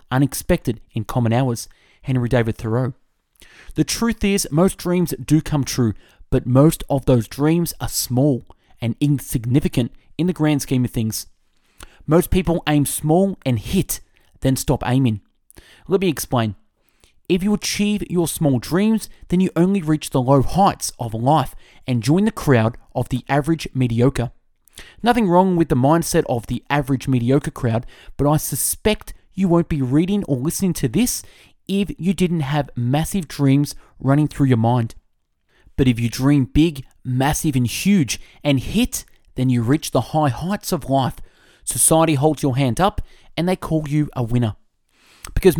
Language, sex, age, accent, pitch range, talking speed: English, male, 20-39, Australian, 125-170 Hz, 165 wpm